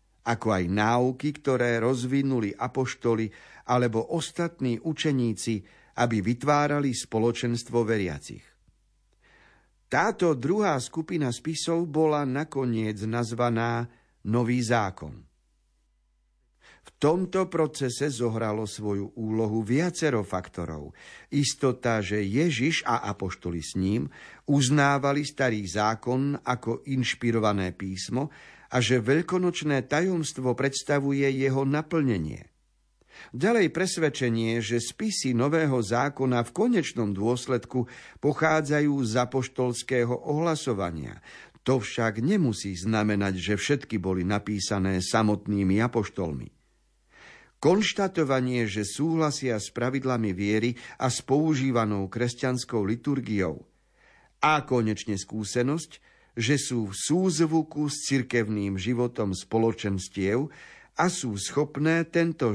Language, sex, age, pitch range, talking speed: Slovak, male, 50-69, 105-145 Hz, 95 wpm